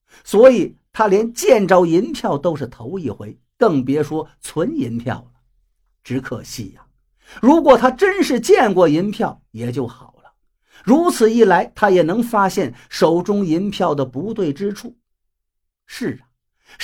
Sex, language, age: male, Chinese, 50-69